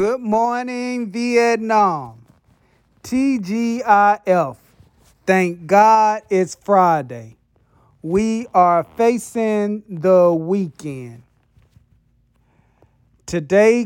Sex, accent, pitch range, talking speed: male, American, 145-210 Hz, 60 wpm